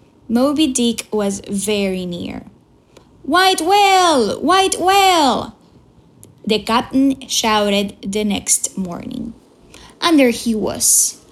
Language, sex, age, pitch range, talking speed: English, female, 10-29, 205-275 Hz, 100 wpm